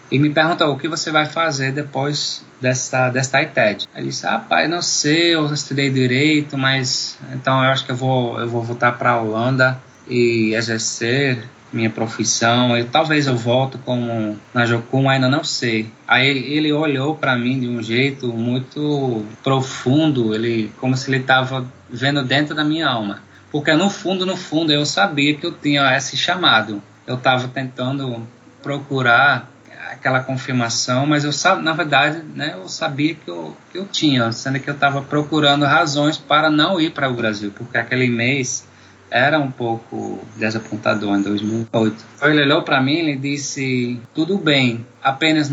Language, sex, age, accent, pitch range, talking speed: Portuguese, male, 20-39, Brazilian, 120-150 Hz, 170 wpm